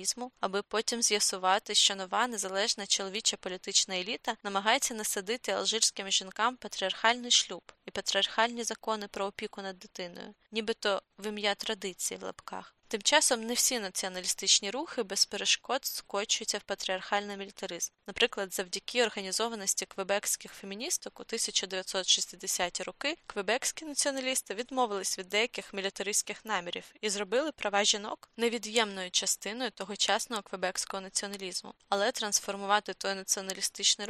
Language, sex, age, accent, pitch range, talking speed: Ukrainian, female, 20-39, native, 195-230 Hz, 120 wpm